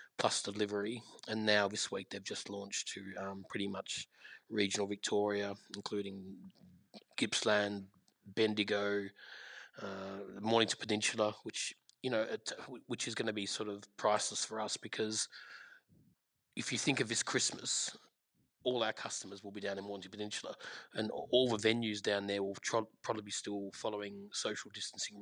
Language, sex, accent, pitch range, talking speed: English, male, Australian, 100-110 Hz, 145 wpm